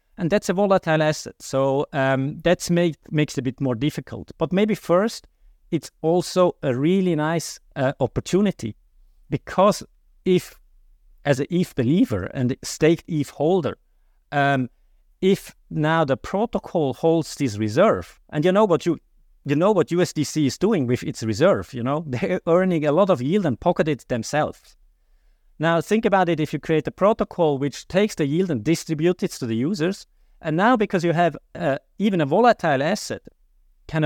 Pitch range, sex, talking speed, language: 130-175 Hz, male, 175 wpm, English